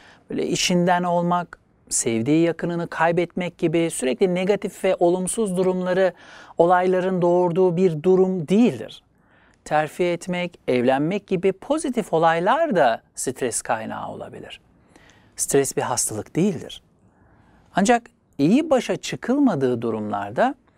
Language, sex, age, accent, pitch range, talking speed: Turkish, male, 60-79, native, 150-195 Hz, 105 wpm